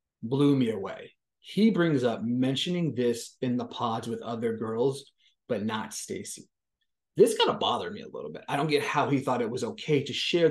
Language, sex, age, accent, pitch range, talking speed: English, male, 30-49, American, 125-215 Hz, 205 wpm